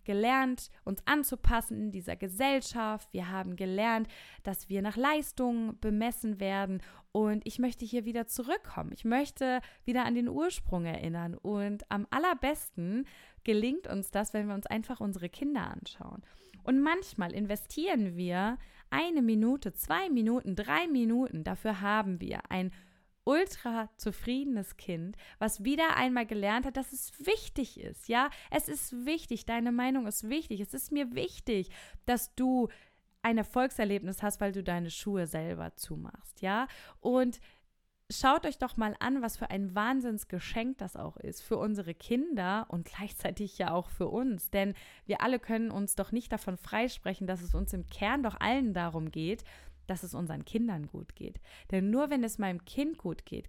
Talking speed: 165 wpm